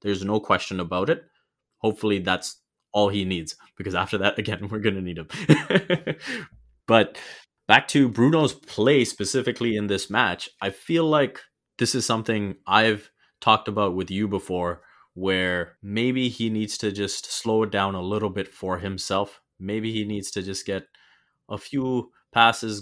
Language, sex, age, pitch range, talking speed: English, male, 20-39, 95-105 Hz, 165 wpm